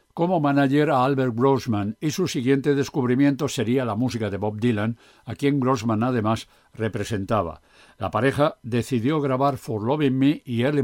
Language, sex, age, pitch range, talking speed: Spanish, male, 60-79, 115-140 Hz, 160 wpm